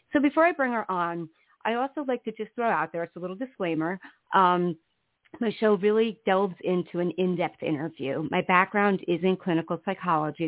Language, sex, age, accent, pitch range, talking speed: English, female, 40-59, American, 160-195 Hz, 190 wpm